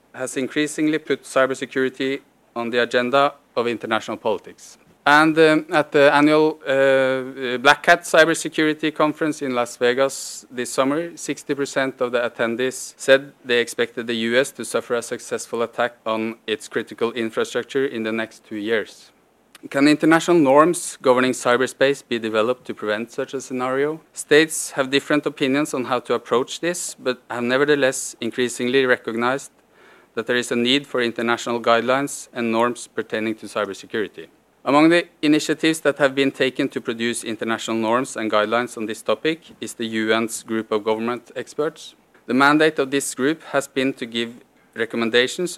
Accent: Norwegian